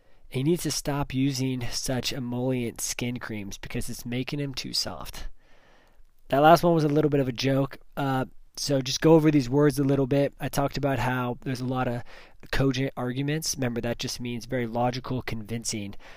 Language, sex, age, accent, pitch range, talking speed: English, male, 20-39, American, 120-140 Hz, 195 wpm